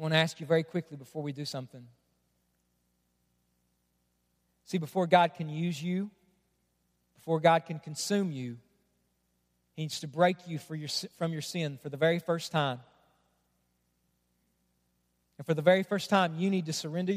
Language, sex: English, male